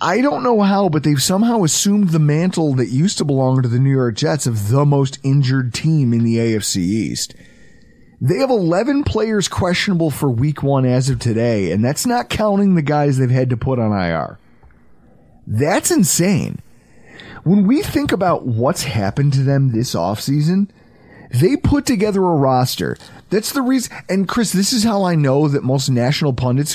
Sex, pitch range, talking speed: male, 125-190 Hz, 185 wpm